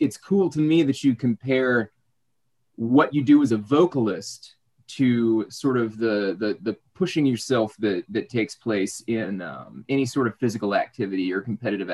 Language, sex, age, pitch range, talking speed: English, male, 20-39, 110-135 Hz, 170 wpm